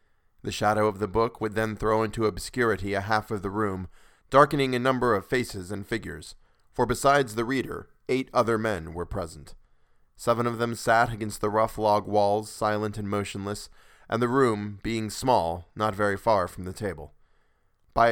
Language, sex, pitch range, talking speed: English, male, 95-115 Hz, 180 wpm